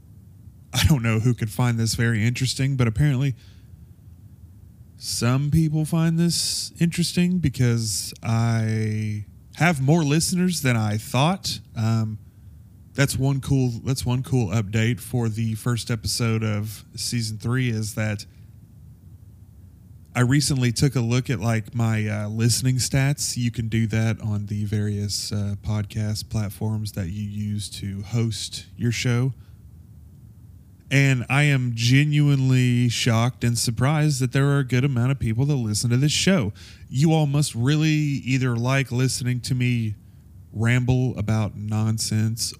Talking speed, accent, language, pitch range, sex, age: 140 wpm, American, English, 105-125 Hz, male, 30-49